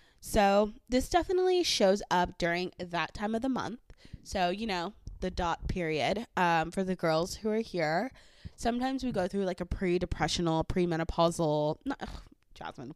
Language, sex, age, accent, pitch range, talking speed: English, female, 20-39, American, 170-215 Hz, 160 wpm